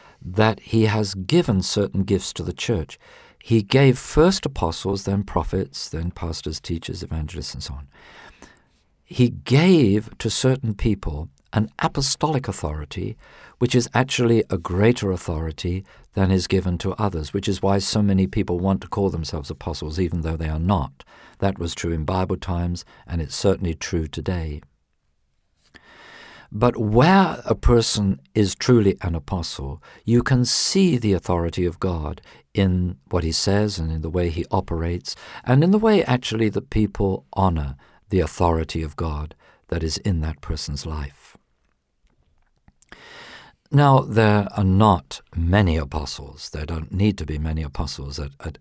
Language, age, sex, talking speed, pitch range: English, 50-69, male, 155 wpm, 80-105 Hz